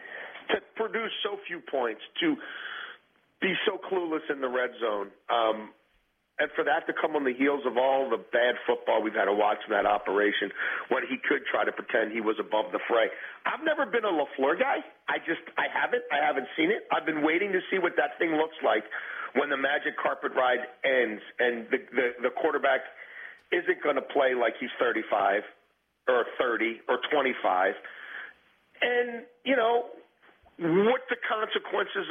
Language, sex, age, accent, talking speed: English, male, 40-59, American, 180 wpm